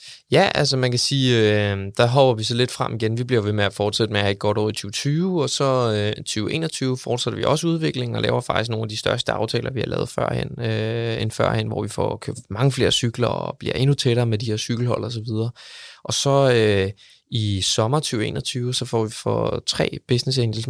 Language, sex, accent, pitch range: Danish, male, native, 105-120 Hz